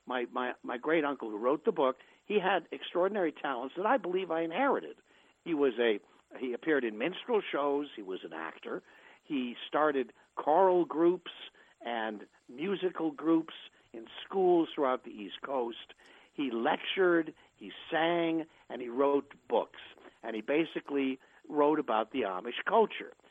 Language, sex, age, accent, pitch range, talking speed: English, male, 60-79, American, 130-195 Hz, 150 wpm